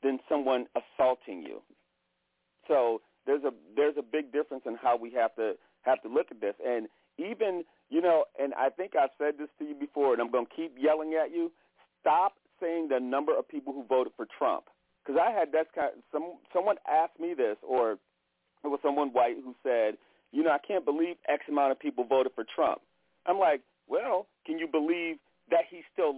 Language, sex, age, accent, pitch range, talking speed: English, male, 40-59, American, 140-225 Hz, 210 wpm